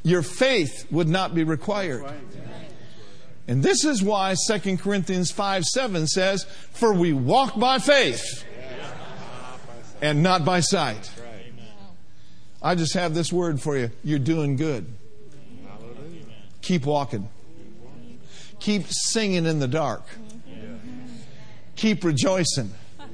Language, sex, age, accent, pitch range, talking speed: English, male, 50-69, American, 140-185 Hz, 110 wpm